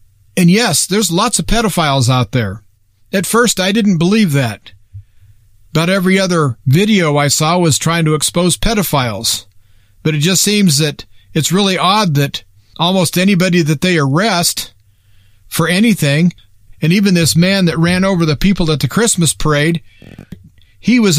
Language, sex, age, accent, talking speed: English, male, 40-59, American, 160 wpm